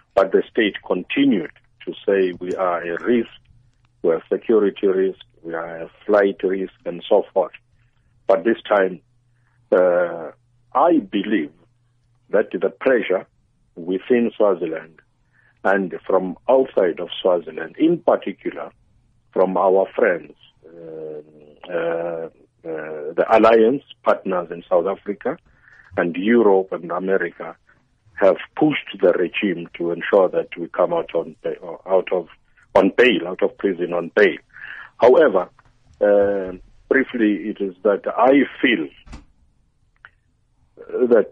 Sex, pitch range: male, 95-135 Hz